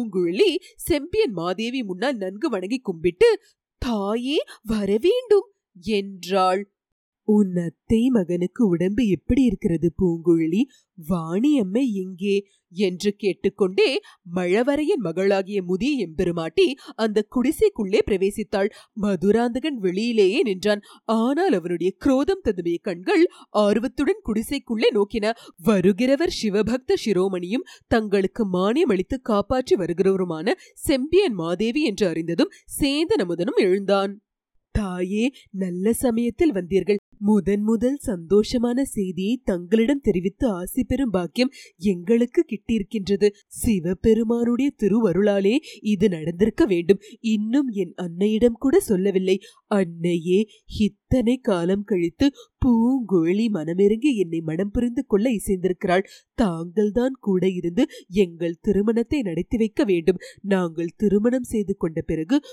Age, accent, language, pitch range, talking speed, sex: 30-49, native, Tamil, 190-250 Hz, 90 wpm, female